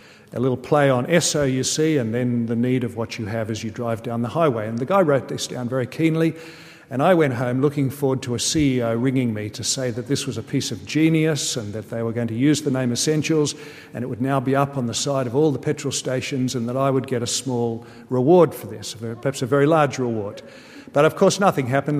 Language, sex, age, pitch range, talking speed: English, male, 50-69, 125-155 Hz, 255 wpm